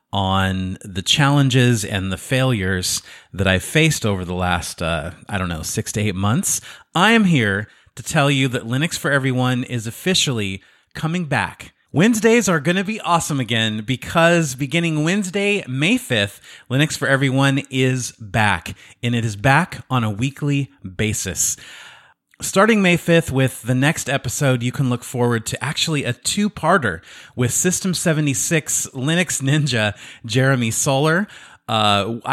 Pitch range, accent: 105-145 Hz, American